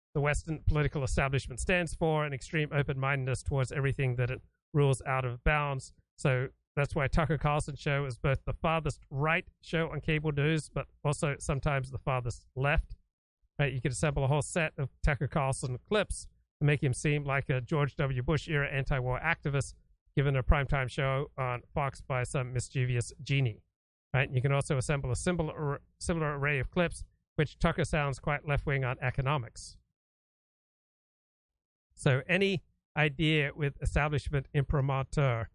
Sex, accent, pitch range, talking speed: male, American, 130-155 Hz, 160 wpm